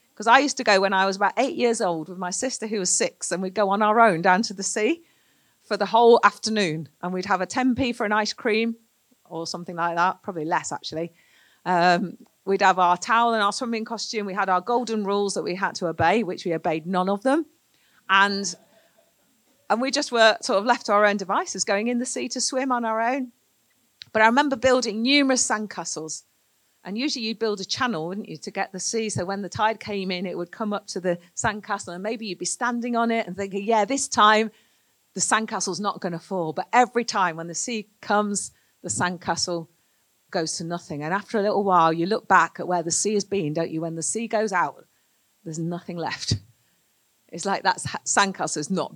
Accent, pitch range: British, 180-225 Hz